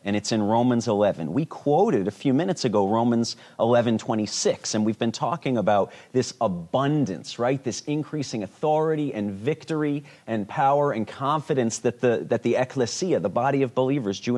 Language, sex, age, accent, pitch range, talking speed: English, male, 40-59, American, 110-140 Hz, 170 wpm